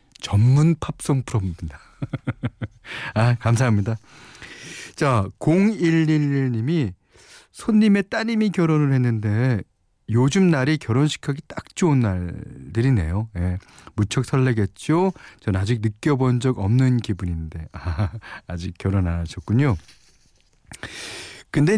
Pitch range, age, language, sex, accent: 100-150 Hz, 40-59, Korean, male, native